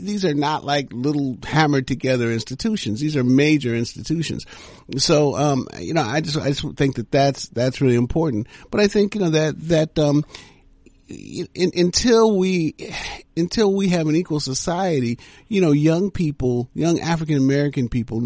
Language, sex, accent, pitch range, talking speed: English, male, American, 110-145 Hz, 170 wpm